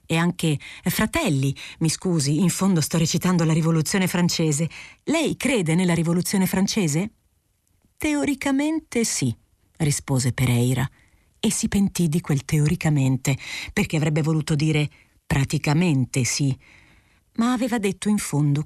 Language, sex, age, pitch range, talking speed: Italian, female, 40-59, 145-195 Hz, 120 wpm